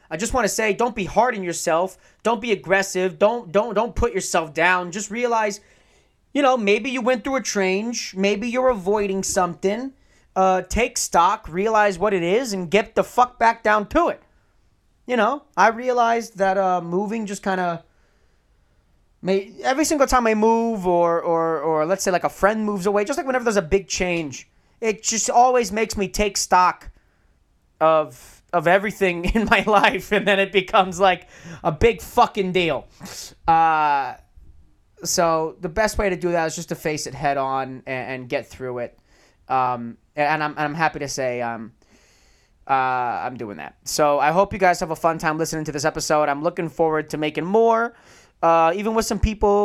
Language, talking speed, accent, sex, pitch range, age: English, 195 wpm, American, male, 165-220 Hz, 20-39